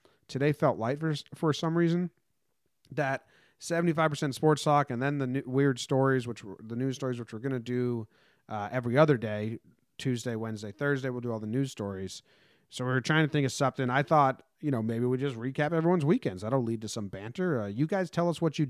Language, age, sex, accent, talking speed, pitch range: English, 30-49, male, American, 225 wpm, 105-145 Hz